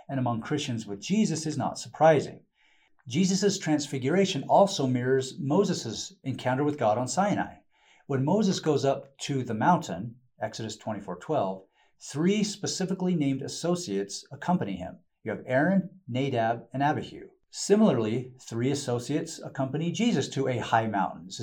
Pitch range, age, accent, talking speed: 115-160 Hz, 40-59, American, 140 wpm